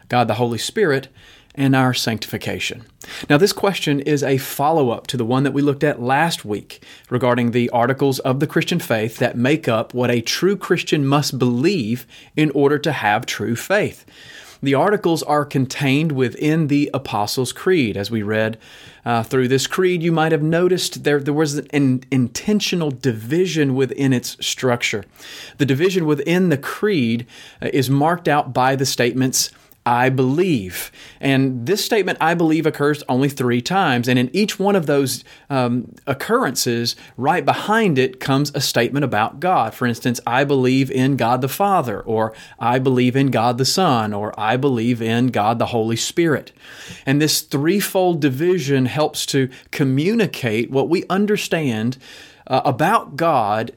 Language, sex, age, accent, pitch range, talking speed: English, male, 30-49, American, 125-155 Hz, 165 wpm